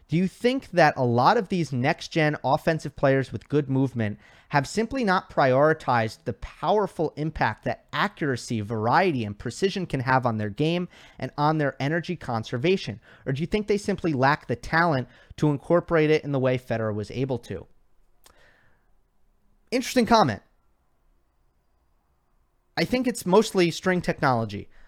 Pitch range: 120-170 Hz